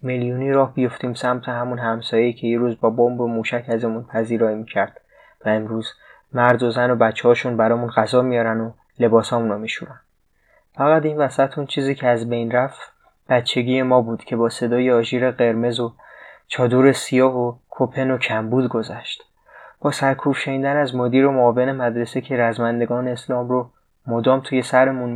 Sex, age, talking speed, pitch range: male, 20-39, 165 wpm, 115-125 Hz